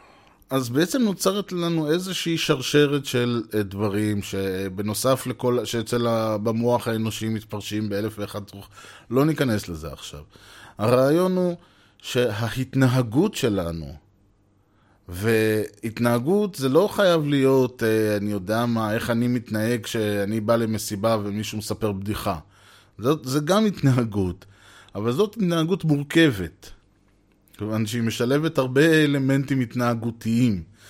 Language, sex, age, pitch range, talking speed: Hebrew, male, 20-39, 105-145 Hz, 105 wpm